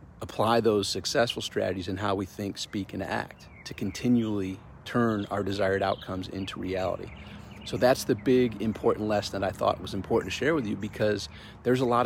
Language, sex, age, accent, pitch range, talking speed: English, male, 40-59, American, 95-115 Hz, 190 wpm